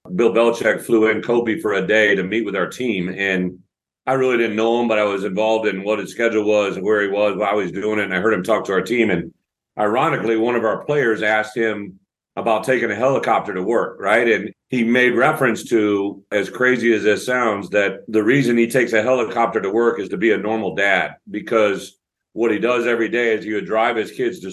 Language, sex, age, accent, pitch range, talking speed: English, male, 40-59, American, 105-120 Hz, 240 wpm